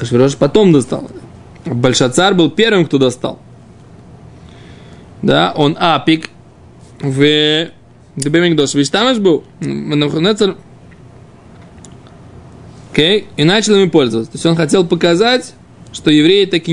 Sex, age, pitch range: male, 20-39, 145-190 Hz